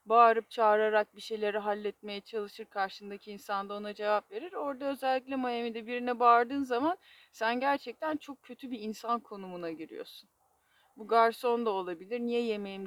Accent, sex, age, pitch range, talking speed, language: native, female, 30-49, 200-255 Hz, 145 wpm, Turkish